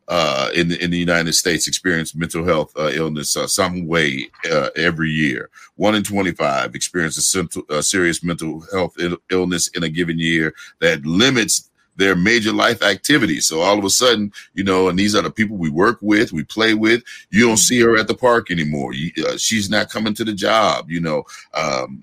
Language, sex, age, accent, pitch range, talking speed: English, male, 50-69, American, 75-95 Hz, 210 wpm